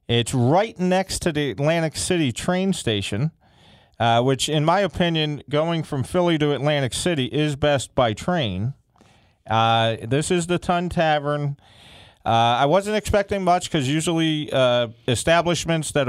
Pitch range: 115-155 Hz